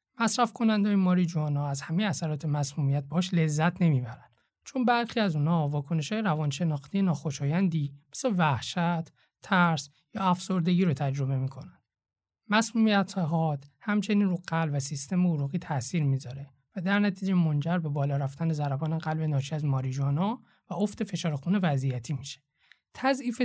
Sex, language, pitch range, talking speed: male, Persian, 145-195 Hz, 145 wpm